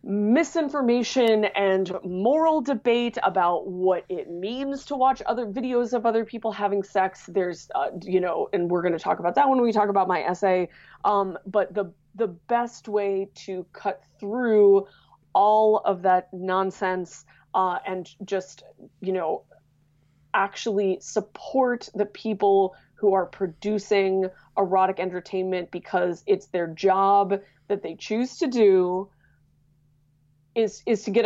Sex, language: female, English